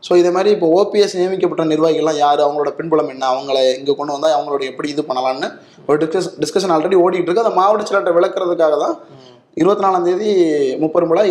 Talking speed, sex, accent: 180 wpm, male, native